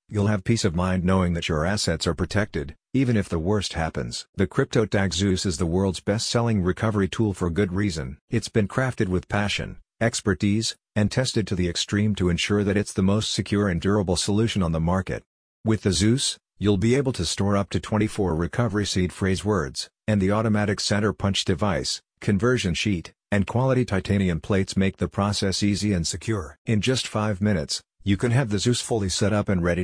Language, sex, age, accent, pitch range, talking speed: English, male, 50-69, American, 90-105 Hz, 200 wpm